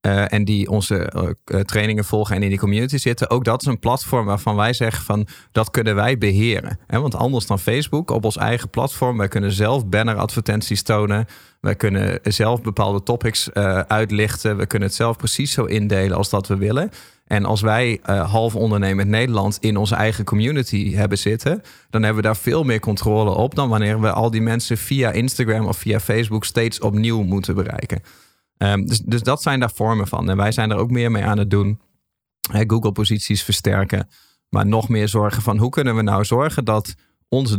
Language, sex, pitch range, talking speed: Dutch, male, 105-120 Hz, 200 wpm